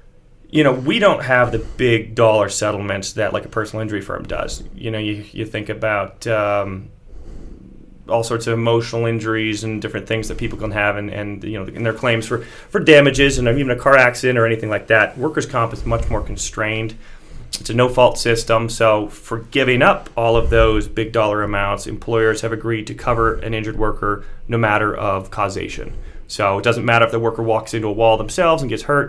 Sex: male